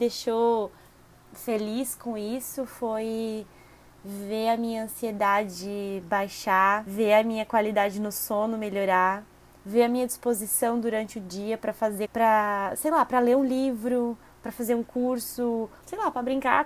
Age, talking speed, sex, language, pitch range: 20-39, 150 wpm, female, Portuguese, 210-250 Hz